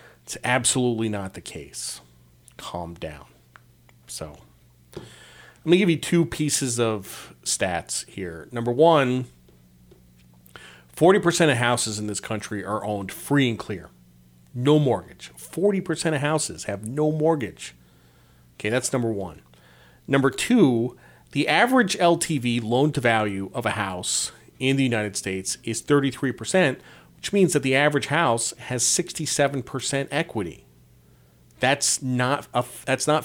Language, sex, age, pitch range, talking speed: English, male, 40-59, 100-150 Hz, 130 wpm